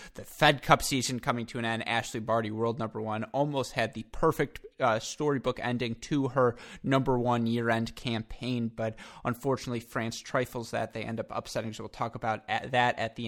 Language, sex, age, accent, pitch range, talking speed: English, male, 20-39, American, 115-130 Hz, 200 wpm